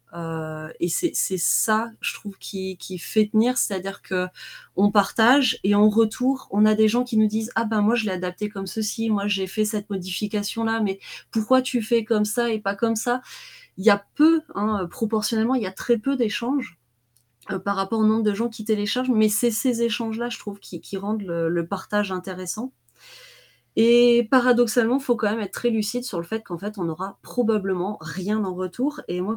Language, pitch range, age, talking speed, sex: French, 185-235 Hz, 20-39, 215 wpm, female